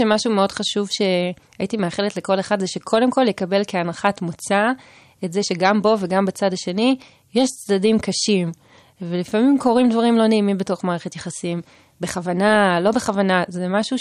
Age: 20-39